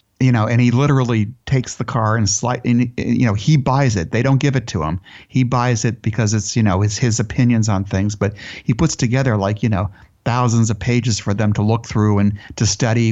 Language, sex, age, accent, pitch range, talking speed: English, male, 50-69, American, 105-125 Hz, 240 wpm